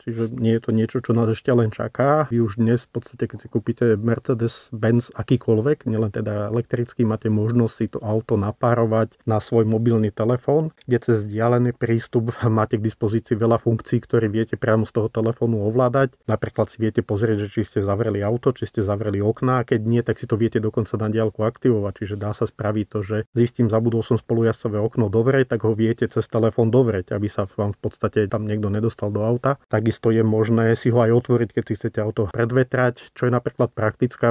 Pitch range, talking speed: 110-125 Hz, 200 wpm